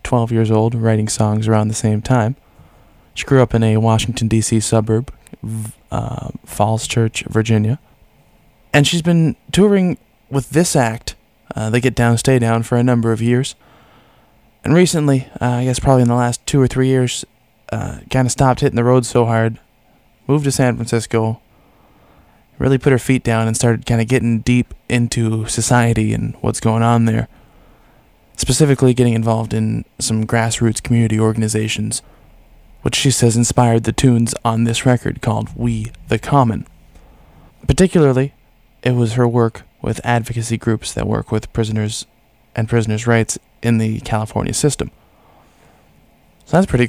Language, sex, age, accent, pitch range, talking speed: English, male, 20-39, American, 110-130 Hz, 160 wpm